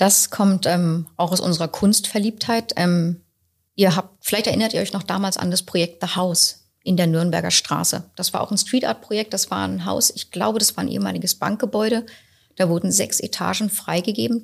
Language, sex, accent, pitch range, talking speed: German, female, German, 170-205 Hz, 195 wpm